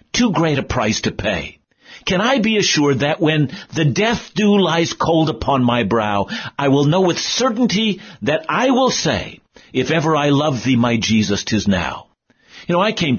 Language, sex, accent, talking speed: English, male, American, 190 wpm